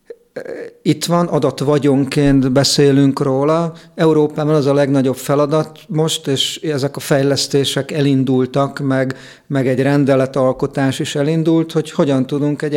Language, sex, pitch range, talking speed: Hungarian, male, 135-155 Hz, 120 wpm